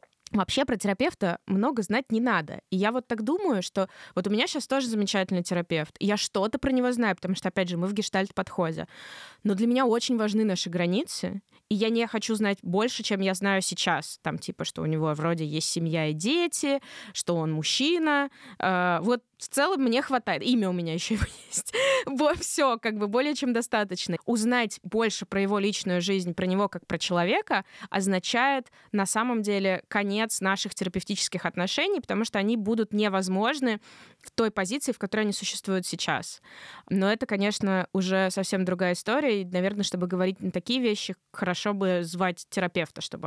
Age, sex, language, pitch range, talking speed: 20-39, female, Russian, 185-230 Hz, 180 wpm